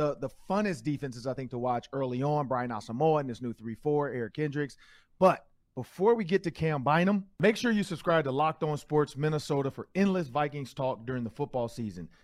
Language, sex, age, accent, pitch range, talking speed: English, male, 40-59, American, 130-175 Hz, 205 wpm